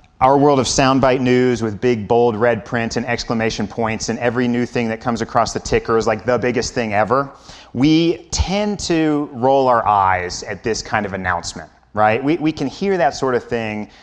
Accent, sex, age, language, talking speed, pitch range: American, male, 30-49, English, 205 wpm, 110-140 Hz